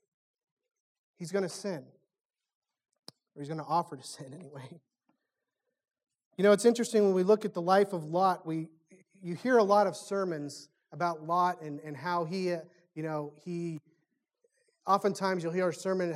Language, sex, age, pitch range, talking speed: English, male, 30-49, 175-220 Hz, 165 wpm